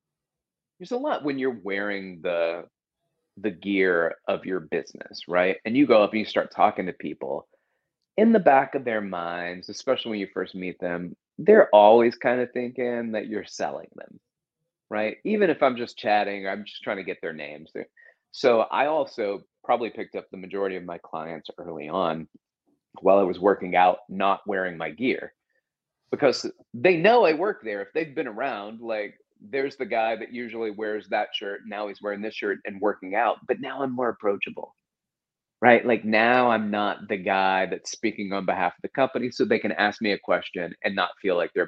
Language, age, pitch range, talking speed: English, 30-49, 95-120 Hz, 200 wpm